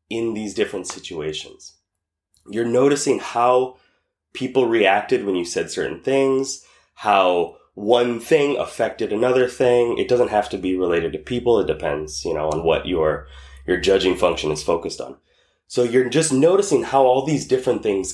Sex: male